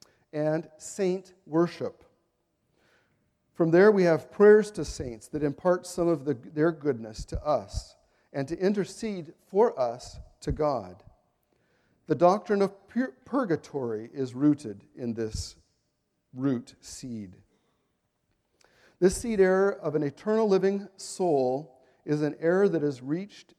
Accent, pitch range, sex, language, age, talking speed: American, 130-185 Hz, male, English, 50-69, 125 wpm